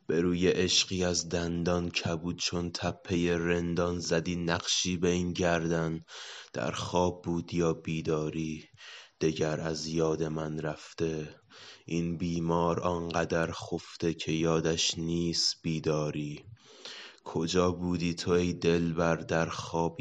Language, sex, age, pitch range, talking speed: Persian, male, 20-39, 80-85 Hz, 115 wpm